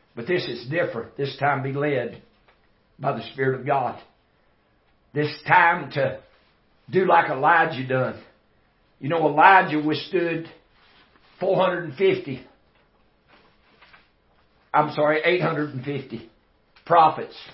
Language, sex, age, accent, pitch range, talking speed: English, male, 60-79, American, 140-170 Hz, 100 wpm